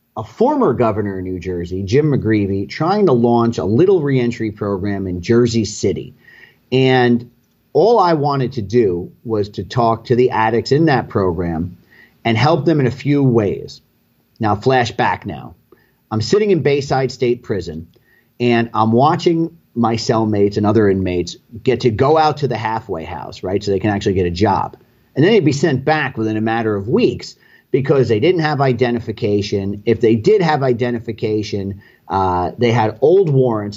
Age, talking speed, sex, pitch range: 40-59, 175 wpm, male, 105-130 Hz